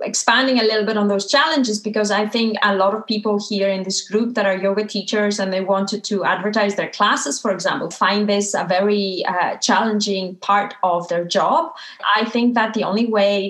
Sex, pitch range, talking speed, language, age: female, 195-245 Hz, 210 wpm, English, 30-49